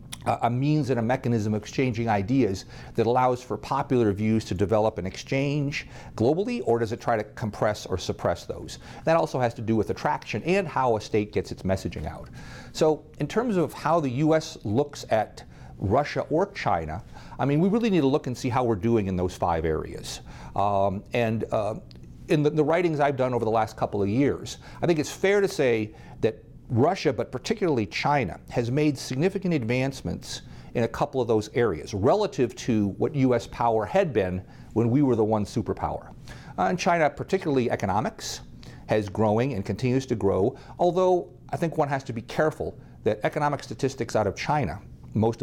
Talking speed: 190 wpm